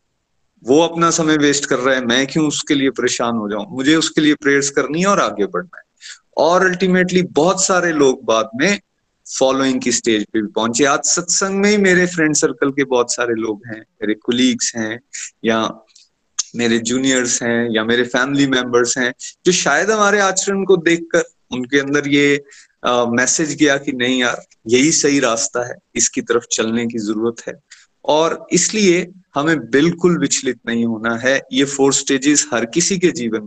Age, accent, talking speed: 30-49, native, 180 wpm